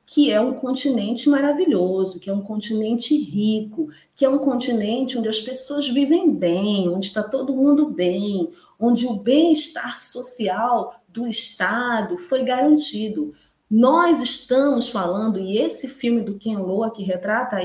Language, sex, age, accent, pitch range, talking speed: Portuguese, female, 40-59, Brazilian, 210-270 Hz, 145 wpm